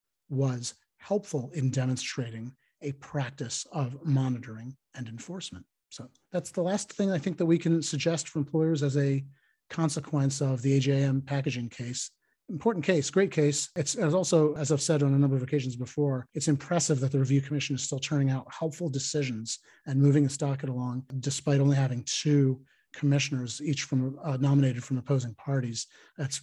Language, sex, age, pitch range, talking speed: English, male, 40-59, 130-150 Hz, 175 wpm